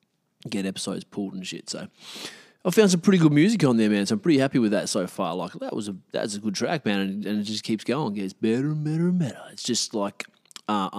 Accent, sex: Australian, male